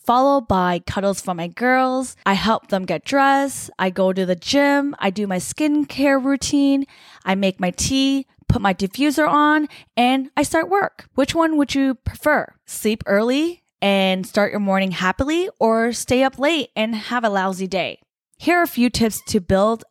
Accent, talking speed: American, 185 wpm